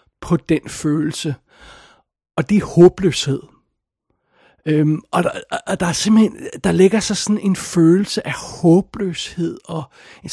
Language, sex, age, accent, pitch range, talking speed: Danish, male, 60-79, native, 150-180 Hz, 140 wpm